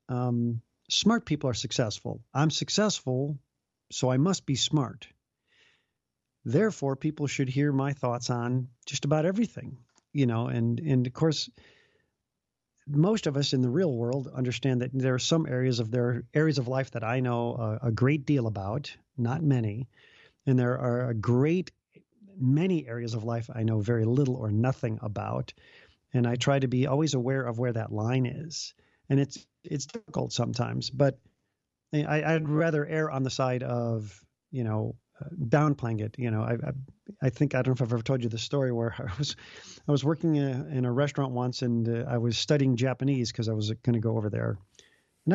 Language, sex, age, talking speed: English, male, 50-69, 195 wpm